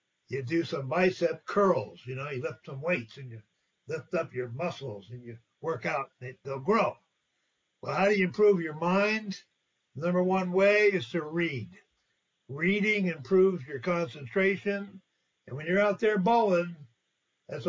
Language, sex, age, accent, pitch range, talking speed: English, male, 60-79, American, 160-195 Hz, 165 wpm